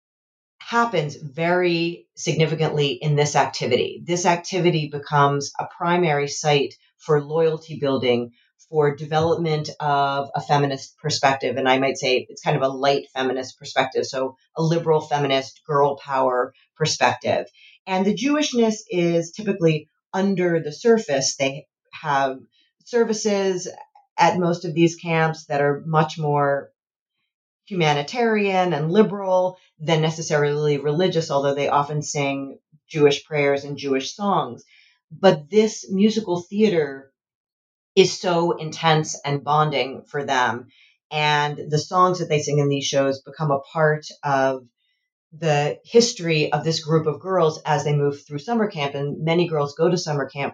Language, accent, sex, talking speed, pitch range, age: English, American, female, 140 wpm, 140-175 Hz, 40-59